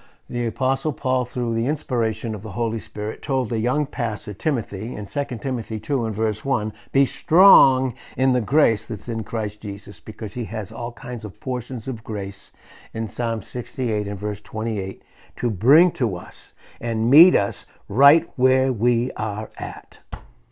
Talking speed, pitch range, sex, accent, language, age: 170 wpm, 110-140 Hz, male, American, English, 60-79